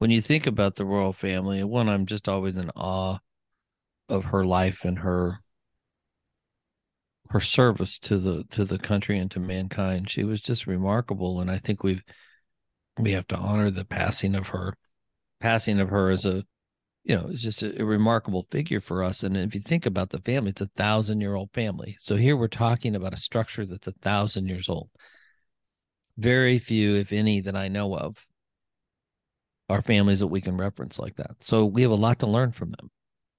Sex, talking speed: male, 190 wpm